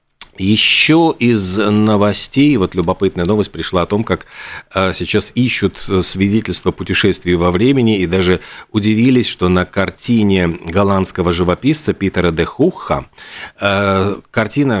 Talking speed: 115 wpm